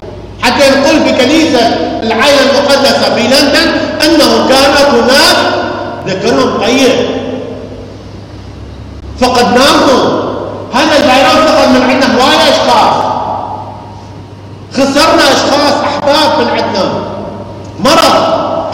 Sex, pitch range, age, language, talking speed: male, 220-305 Hz, 50-69, English, 75 wpm